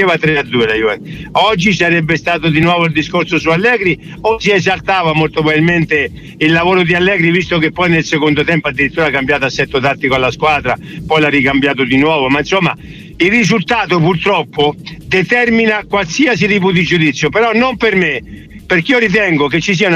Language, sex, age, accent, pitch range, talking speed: Italian, male, 50-69, native, 150-200 Hz, 185 wpm